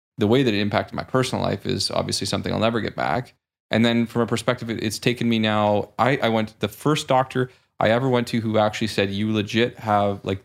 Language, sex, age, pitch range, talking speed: English, male, 20-39, 105-120 Hz, 240 wpm